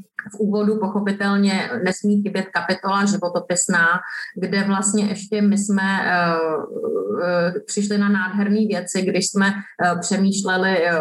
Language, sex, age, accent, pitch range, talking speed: Czech, female, 30-49, native, 185-210 Hz, 120 wpm